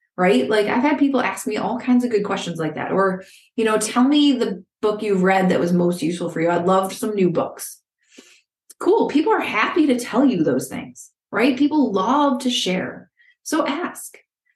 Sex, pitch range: female, 210-280 Hz